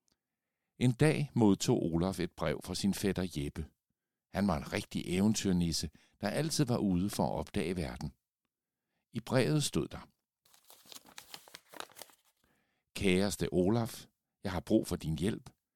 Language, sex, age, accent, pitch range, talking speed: Danish, male, 60-79, native, 85-120 Hz, 135 wpm